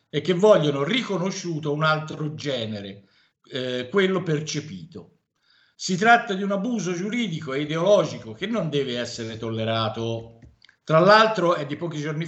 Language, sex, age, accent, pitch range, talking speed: Italian, male, 50-69, native, 120-165 Hz, 140 wpm